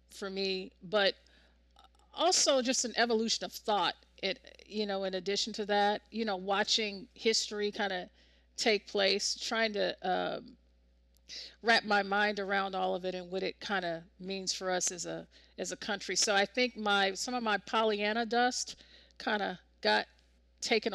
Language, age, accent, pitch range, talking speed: English, 40-59, American, 185-215 Hz, 170 wpm